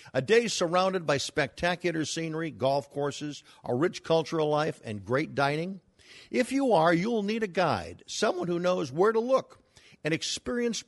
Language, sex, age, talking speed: English, male, 50-69, 165 wpm